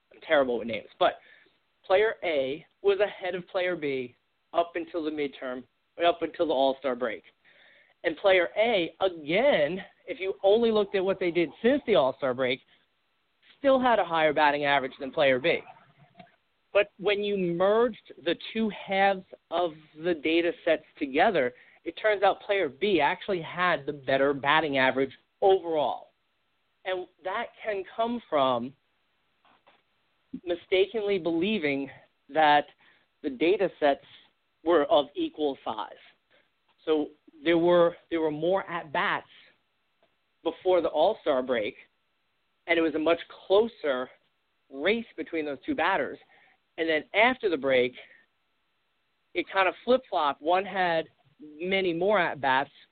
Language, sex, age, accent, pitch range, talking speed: English, male, 40-59, American, 155-200 Hz, 140 wpm